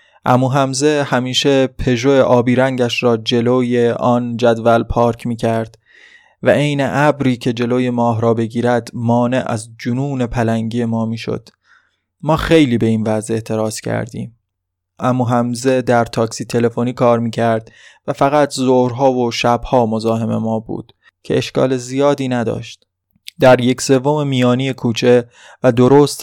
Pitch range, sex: 115-130 Hz, male